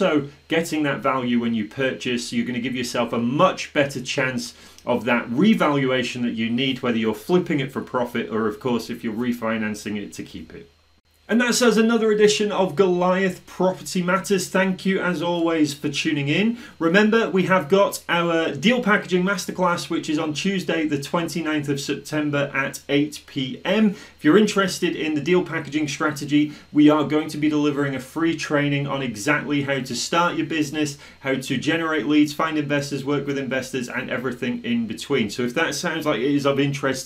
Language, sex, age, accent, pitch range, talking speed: English, male, 30-49, British, 130-170 Hz, 190 wpm